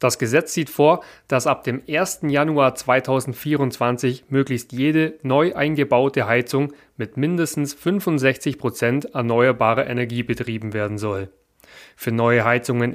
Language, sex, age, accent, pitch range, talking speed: German, male, 30-49, German, 115-145 Hz, 125 wpm